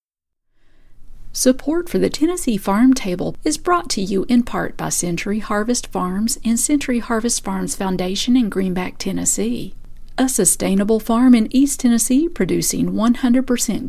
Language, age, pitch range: English, 50-69, 160-240 Hz